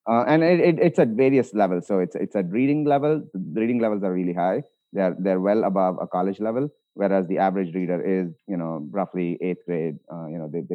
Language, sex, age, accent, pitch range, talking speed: English, male, 30-49, Indian, 90-110 Hz, 235 wpm